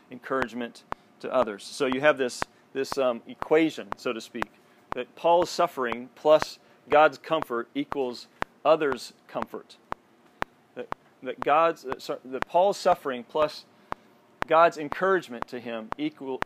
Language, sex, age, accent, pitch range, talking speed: English, male, 40-59, American, 125-155 Hz, 130 wpm